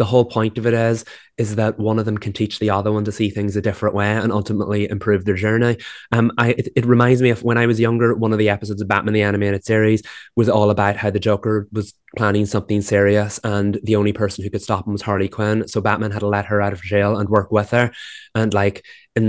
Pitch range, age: 105-115 Hz, 20-39